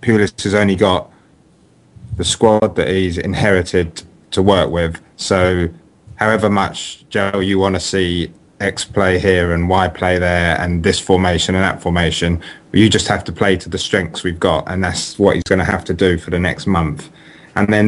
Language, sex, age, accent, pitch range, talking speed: English, male, 30-49, British, 85-105 Hz, 195 wpm